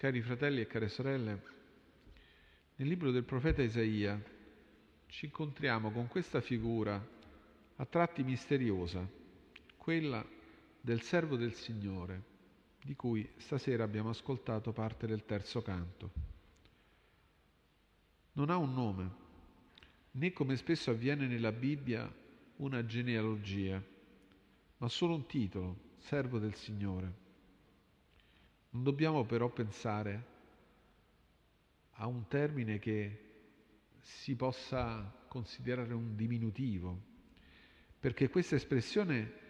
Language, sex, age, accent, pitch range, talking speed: Italian, male, 50-69, native, 95-130 Hz, 100 wpm